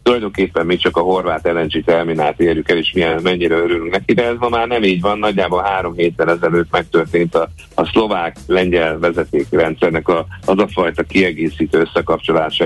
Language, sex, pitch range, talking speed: Hungarian, male, 85-100 Hz, 175 wpm